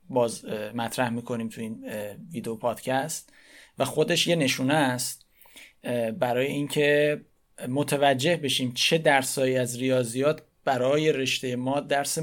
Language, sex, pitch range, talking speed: Persian, male, 125-150 Hz, 120 wpm